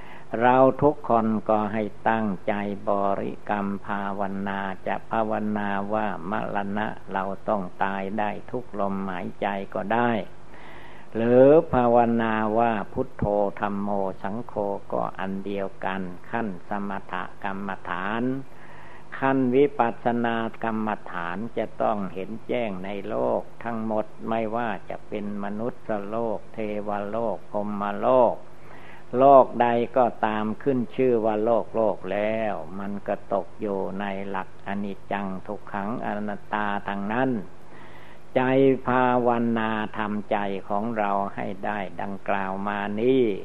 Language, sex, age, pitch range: Thai, male, 60-79, 100-115 Hz